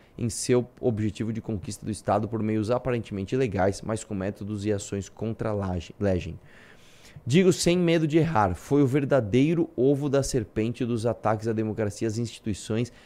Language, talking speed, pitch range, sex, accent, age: Portuguese, 165 wpm, 105-145 Hz, male, Brazilian, 20-39